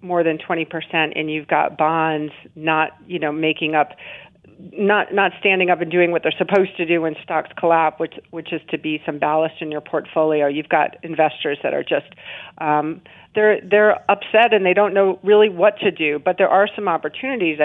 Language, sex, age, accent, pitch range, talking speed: English, female, 40-59, American, 160-195 Hz, 200 wpm